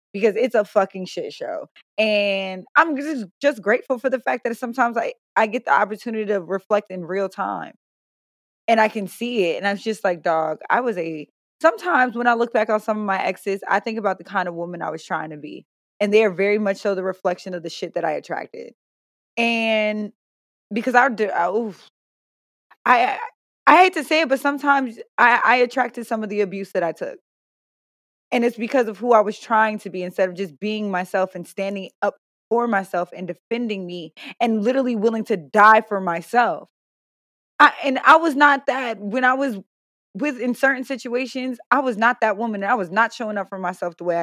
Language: English